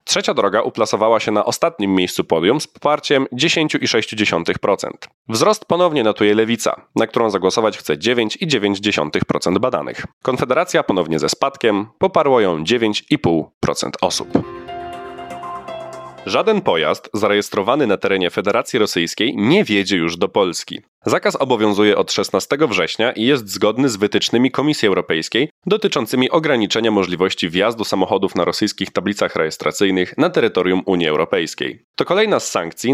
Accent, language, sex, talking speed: native, Polish, male, 130 wpm